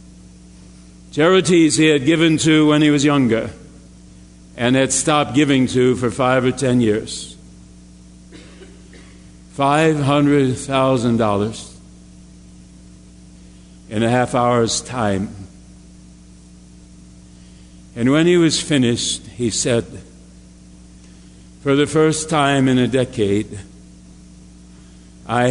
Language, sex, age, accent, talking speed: English, male, 60-79, American, 95 wpm